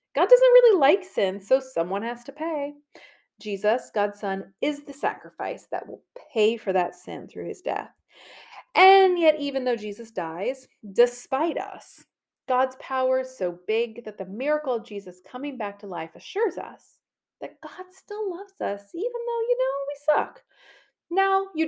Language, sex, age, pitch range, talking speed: English, female, 30-49, 215-325 Hz, 170 wpm